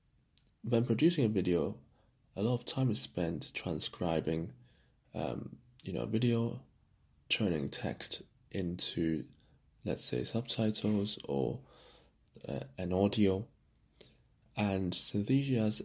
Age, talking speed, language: 20-39, 105 wpm, English